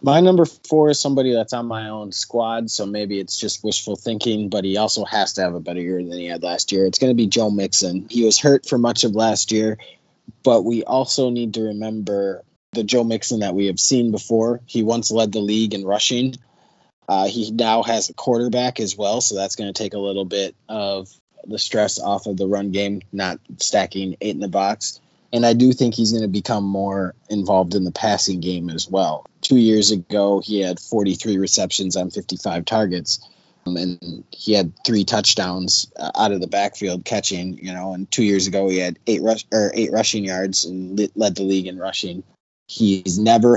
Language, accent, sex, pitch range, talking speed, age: English, American, male, 95-115 Hz, 210 wpm, 20-39